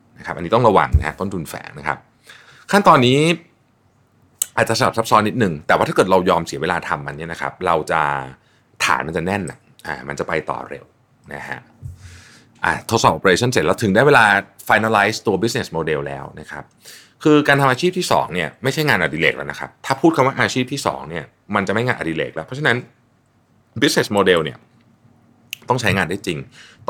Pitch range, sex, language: 95-125 Hz, male, Thai